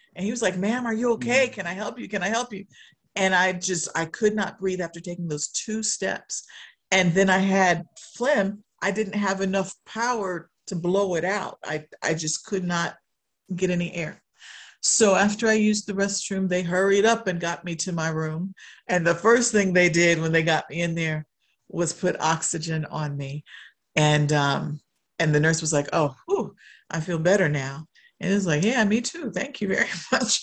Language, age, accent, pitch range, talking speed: English, 50-69, American, 165-195 Hz, 210 wpm